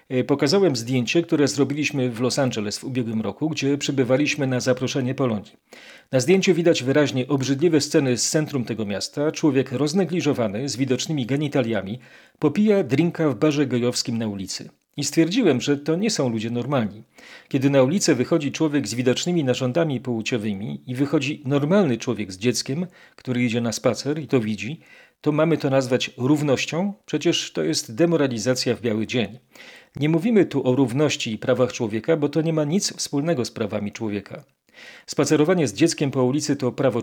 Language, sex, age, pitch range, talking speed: Polish, male, 40-59, 120-155 Hz, 165 wpm